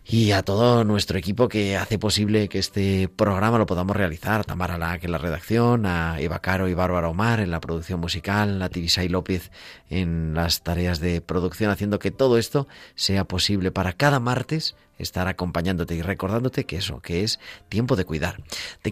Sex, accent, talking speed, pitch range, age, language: male, Spanish, 185 wpm, 90-110 Hz, 30-49, Spanish